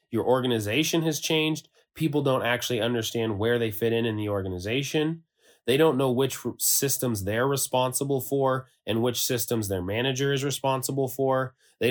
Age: 30-49